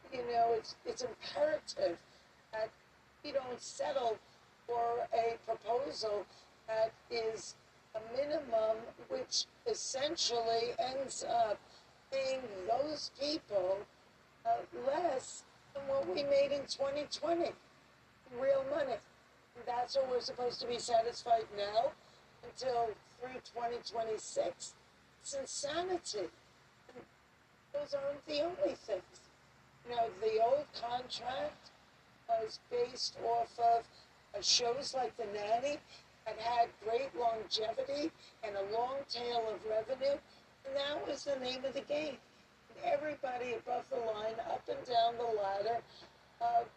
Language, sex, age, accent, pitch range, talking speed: English, female, 60-79, American, 230-285 Hz, 115 wpm